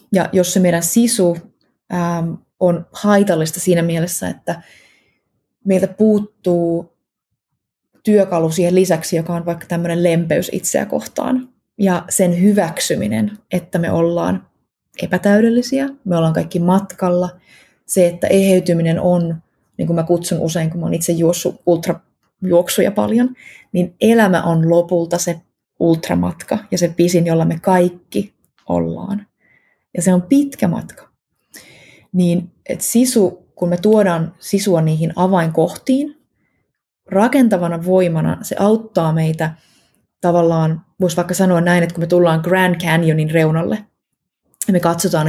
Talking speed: 130 wpm